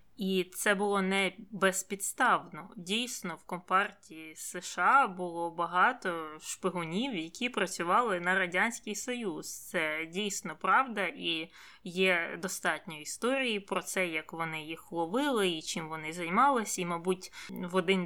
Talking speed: 125 wpm